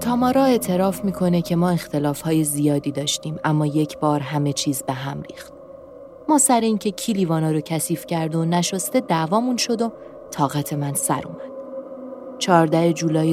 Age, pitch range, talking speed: 30-49, 155-245 Hz, 160 wpm